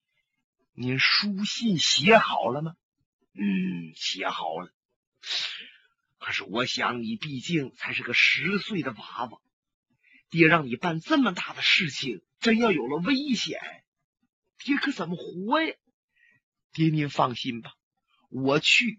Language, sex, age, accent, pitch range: Chinese, male, 30-49, native, 165-275 Hz